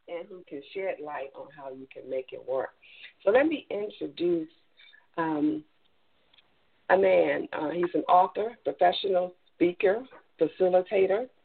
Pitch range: 155-225 Hz